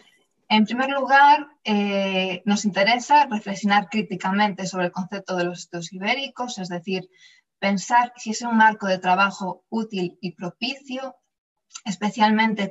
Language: Spanish